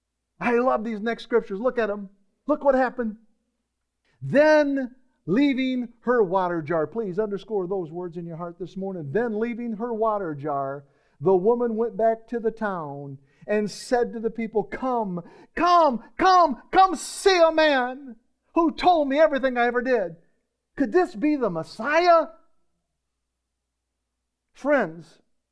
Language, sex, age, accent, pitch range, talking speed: English, male, 50-69, American, 190-250 Hz, 145 wpm